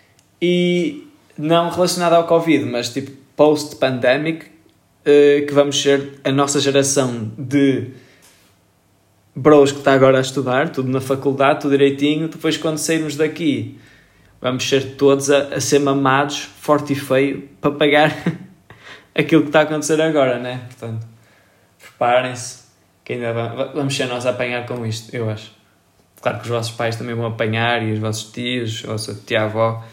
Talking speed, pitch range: 160 wpm, 110-140 Hz